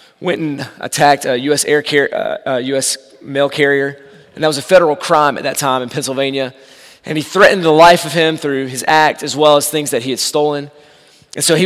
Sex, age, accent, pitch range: male, 30-49, American, 140-175 Hz